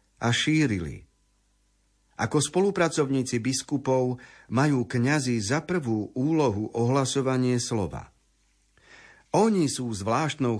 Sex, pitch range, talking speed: male, 105-130 Hz, 90 wpm